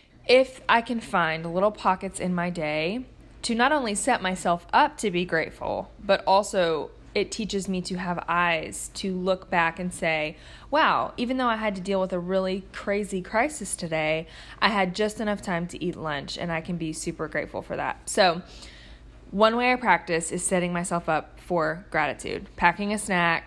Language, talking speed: English, 190 wpm